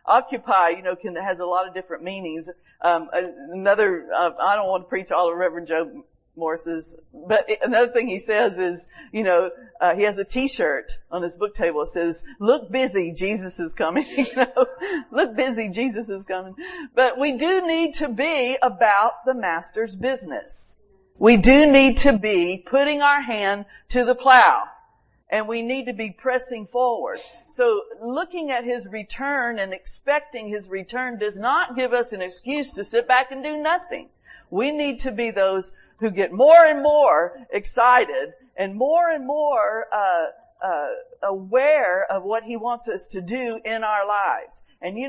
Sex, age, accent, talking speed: female, 50-69, American, 175 wpm